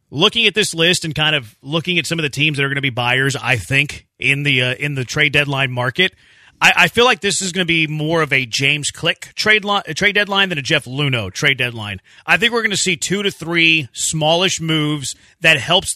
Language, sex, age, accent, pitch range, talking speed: English, male, 30-49, American, 135-175 Hz, 245 wpm